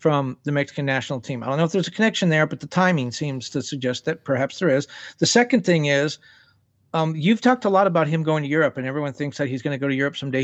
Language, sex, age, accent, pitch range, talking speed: English, male, 50-69, American, 145-180 Hz, 275 wpm